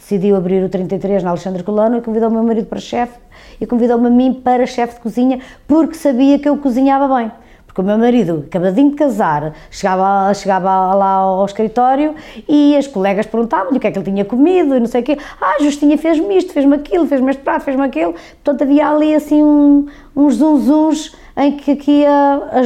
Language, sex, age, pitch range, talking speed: Portuguese, female, 20-39, 195-275 Hz, 210 wpm